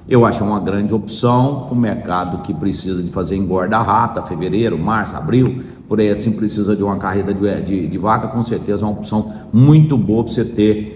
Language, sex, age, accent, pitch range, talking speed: Portuguese, male, 60-79, Brazilian, 105-135 Hz, 195 wpm